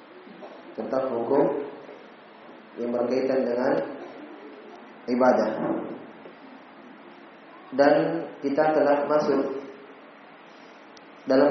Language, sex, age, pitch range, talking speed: Indonesian, male, 20-39, 130-155 Hz, 55 wpm